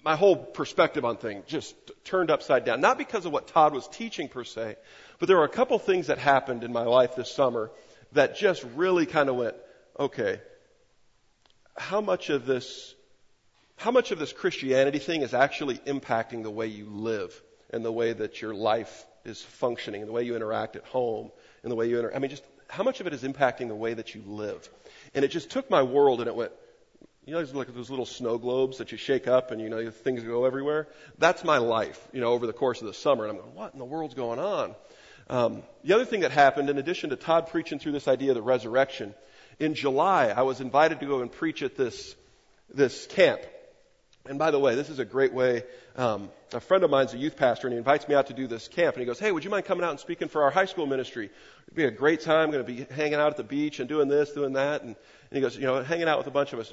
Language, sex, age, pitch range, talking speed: English, male, 40-59, 125-170 Hz, 255 wpm